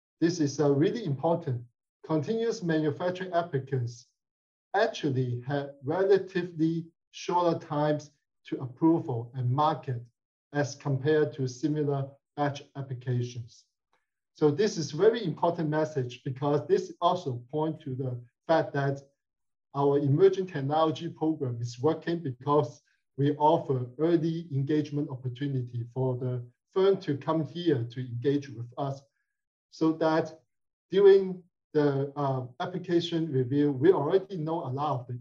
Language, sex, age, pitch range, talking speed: English, male, 50-69, 130-160 Hz, 125 wpm